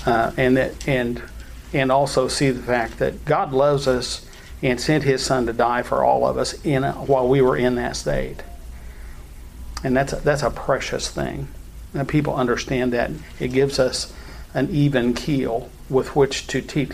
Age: 50-69